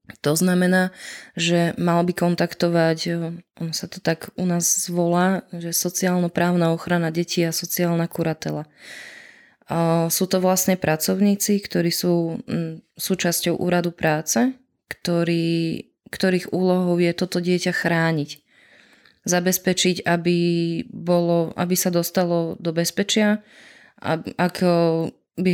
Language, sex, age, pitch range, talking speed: Slovak, female, 20-39, 170-185 Hz, 115 wpm